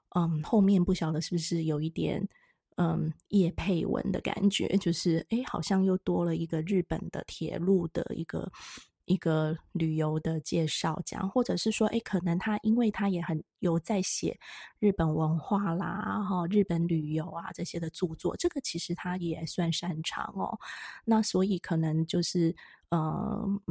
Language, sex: Chinese, female